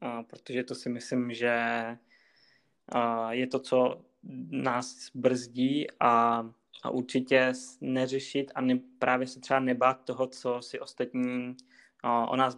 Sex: male